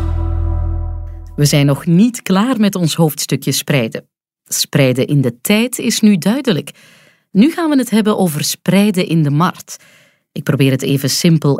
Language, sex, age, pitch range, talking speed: Dutch, female, 30-49, 140-205 Hz, 160 wpm